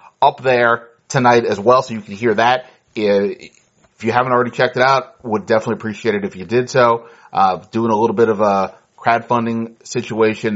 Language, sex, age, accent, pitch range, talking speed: English, male, 30-49, American, 110-125 Hz, 195 wpm